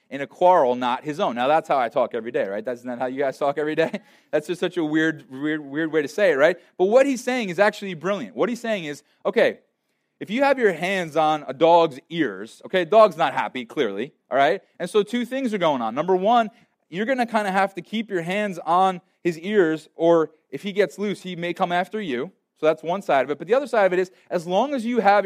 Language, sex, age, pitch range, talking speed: English, male, 20-39, 155-215 Hz, 260 wpm